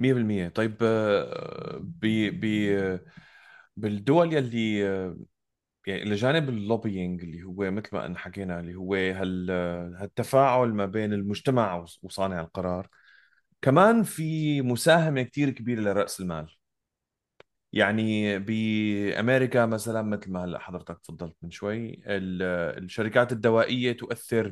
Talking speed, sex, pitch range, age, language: 105 wpm, male, 95-130 Hz, 30-49, Arabic